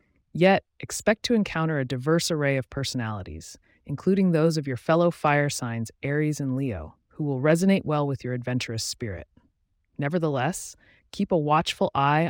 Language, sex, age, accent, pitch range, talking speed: English, female, 30-49, American, 120-165 Hz, 155 wpm